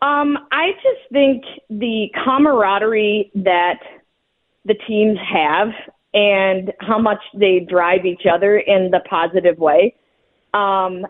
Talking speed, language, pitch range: 120 wpm, English, 190-235 Hz